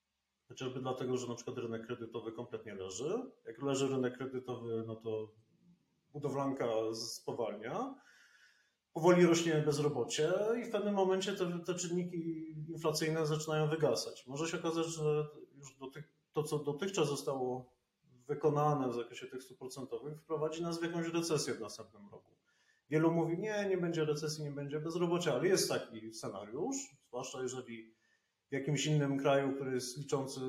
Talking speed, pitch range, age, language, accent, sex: 150 wpm, 125-160 Hz, 30-49, Polish, native, male